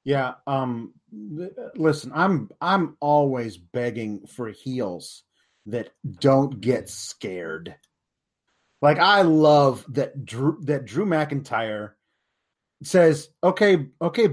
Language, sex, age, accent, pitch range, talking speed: English, male, 30-49, American, 150-200 Hz, 105 wpm